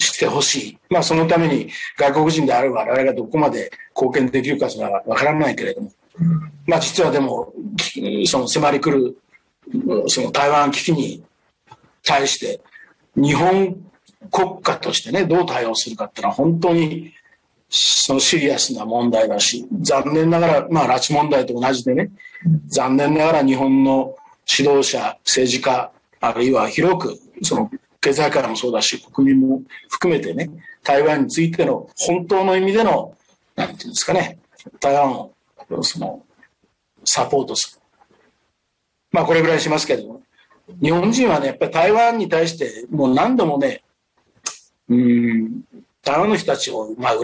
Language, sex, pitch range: Japanese, male, 135-185 Hz